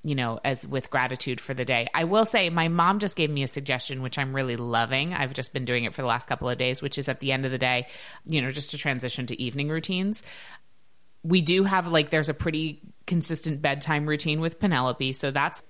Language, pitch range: English, 125-155 Hz